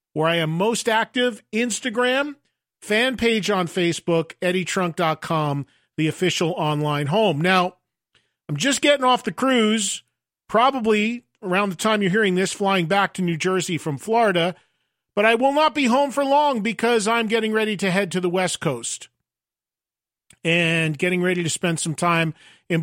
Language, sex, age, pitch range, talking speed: English, male, 40-59, 170-220 Hz, 165 wpm